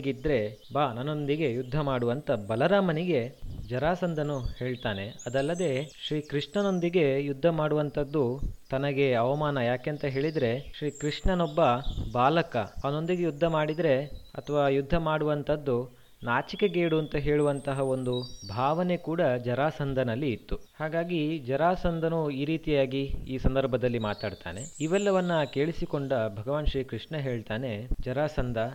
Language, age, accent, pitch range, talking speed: Kannada, 20-39, native, 125-160 Hz, 100 wpm